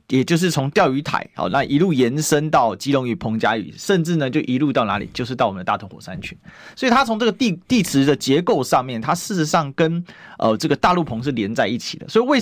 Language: Chinese